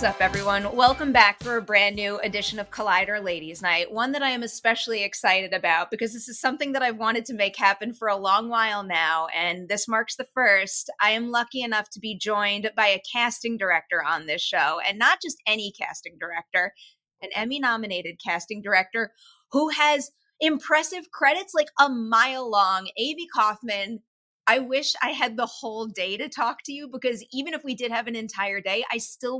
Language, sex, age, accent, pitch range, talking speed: English, female, 30-49, American, 195-255 Hz, 195 wpm